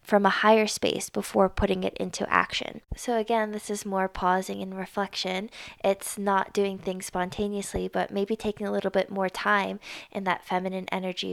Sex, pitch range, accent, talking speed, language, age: female, 185-210 Hz, American, 180 wpm, English, 20-39